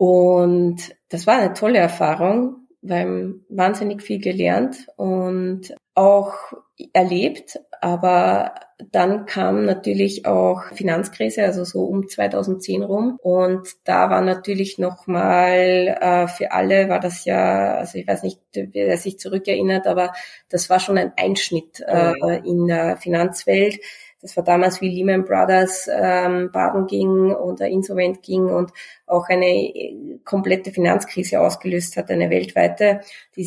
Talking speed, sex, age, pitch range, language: 130 wpm, female, 20-39, 175-195 Hz, German